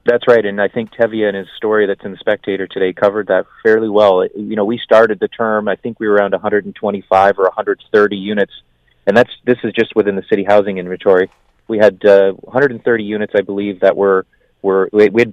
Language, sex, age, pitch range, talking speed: English, male, 30-49, 95-115 Hz, 215 wpm